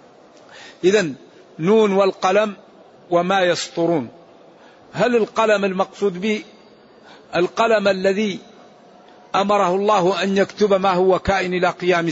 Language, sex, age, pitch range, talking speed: Arabic, male, 50-69, 180-210 Hz, 100 wpm